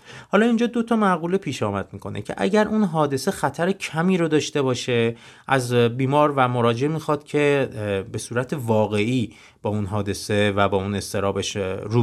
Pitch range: 100-150 Hz